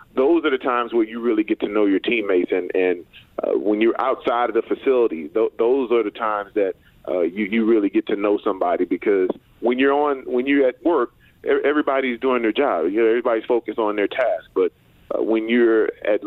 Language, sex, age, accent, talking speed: English, male, 40-59, American, 220 wpm